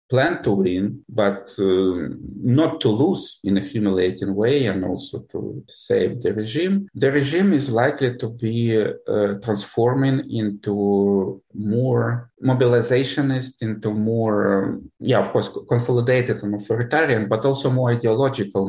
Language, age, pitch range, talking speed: English, 50-69, 100-125 Hz, 135 wpm